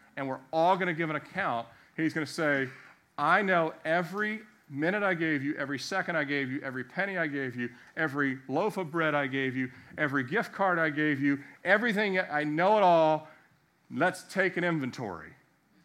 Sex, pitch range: male, 120-160 Hz